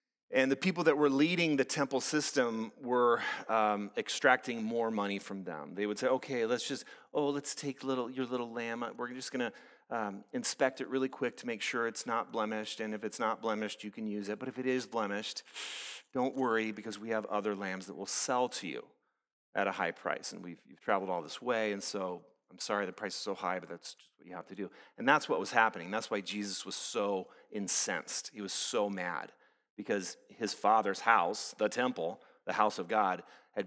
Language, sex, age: English, male, 40-59